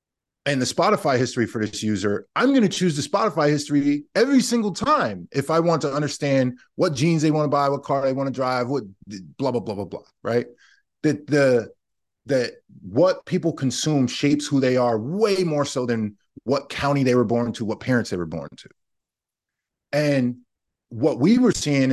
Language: English